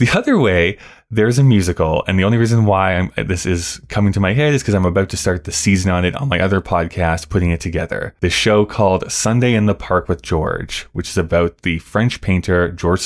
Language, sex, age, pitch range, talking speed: English, male, 20-39, 90-110 Hz, 235 wpm